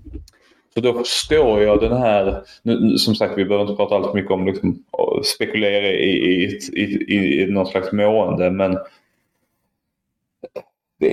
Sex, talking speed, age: male, 160 wpm, 20-39